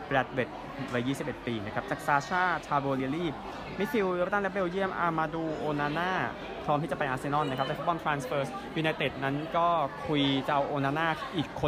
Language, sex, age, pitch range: Thai, male, 20-39, 135-160 Hz